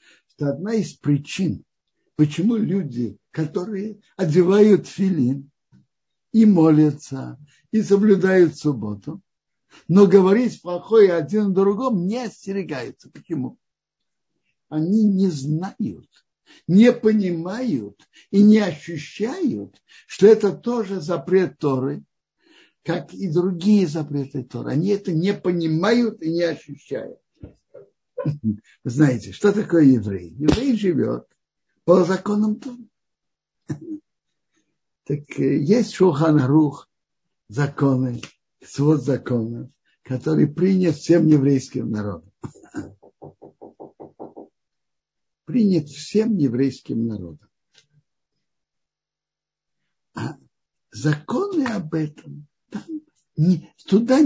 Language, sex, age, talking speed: Russian, male, 60-79, 85 wpm